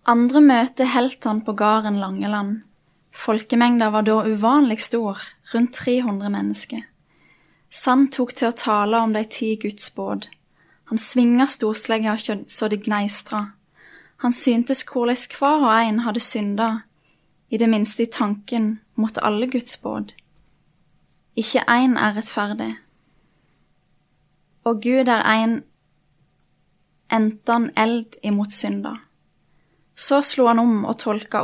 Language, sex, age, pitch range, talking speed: English, female, 10-29, 210-240 Hz, 120 wpm